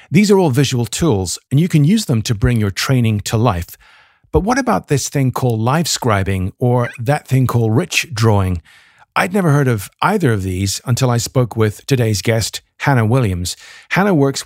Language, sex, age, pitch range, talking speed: English, male, 40-59, 110-135 Hz, 195 wpm